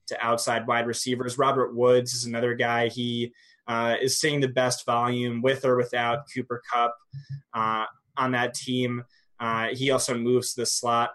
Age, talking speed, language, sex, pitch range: 20-39, 165 wpm, English, male, 120-135 Hz